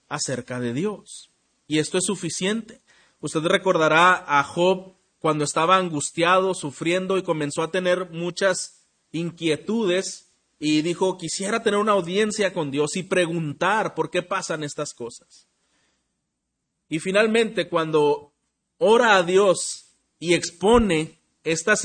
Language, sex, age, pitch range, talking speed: Spanish, male, 40-59, 155-190 Hz, 125 wpm